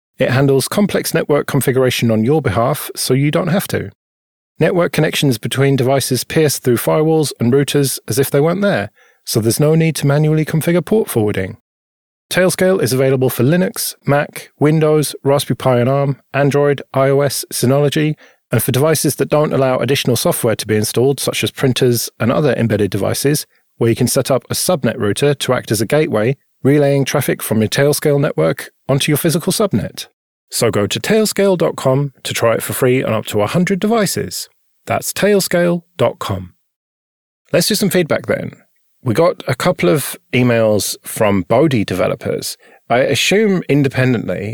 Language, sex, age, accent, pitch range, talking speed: English, male, 40-59, British, 110-155 Hz, 165 wpm